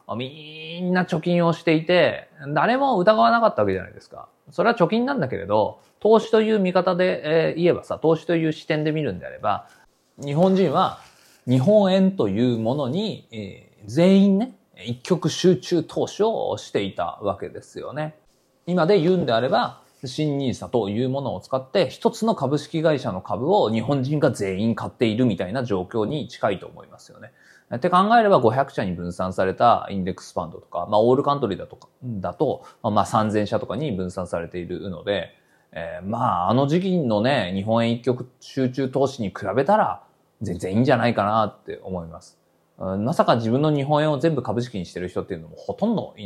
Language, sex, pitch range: Japanese, male, 110-175 Hz